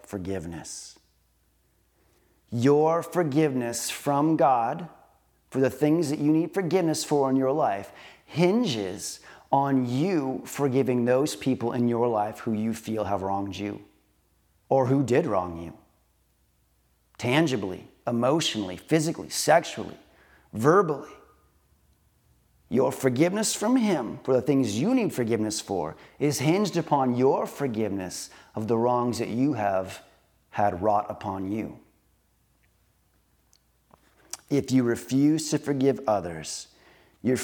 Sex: male